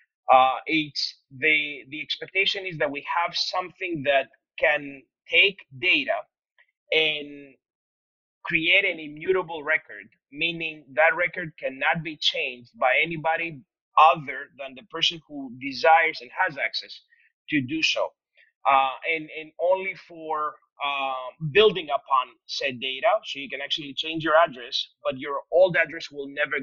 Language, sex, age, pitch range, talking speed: English, male, 30-49, 140-185 Hz, 140 wpm